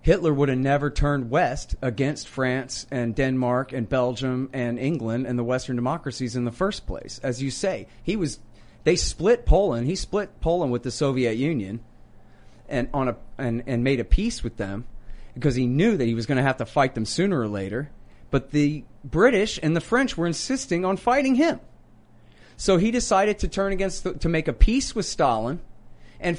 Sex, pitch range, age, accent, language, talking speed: male, 130-180 Hz, 30-49, American, English, 200 wpm